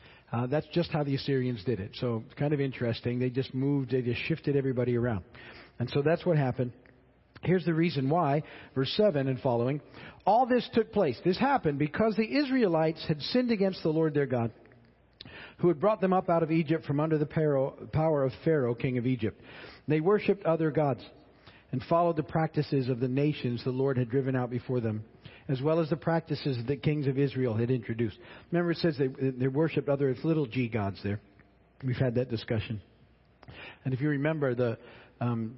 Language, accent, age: English, American, 50-69